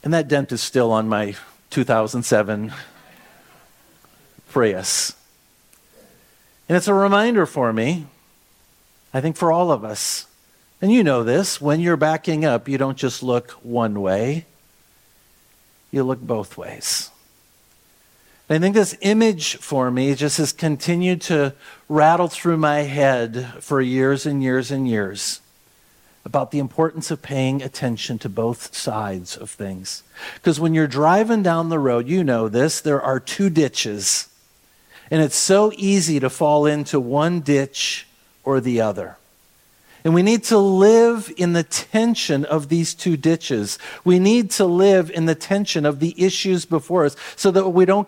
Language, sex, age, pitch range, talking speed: English, male, 50-69, 135-180 Hz, 155 wpm